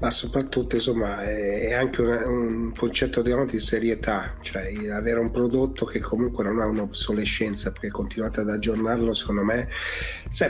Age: 30-49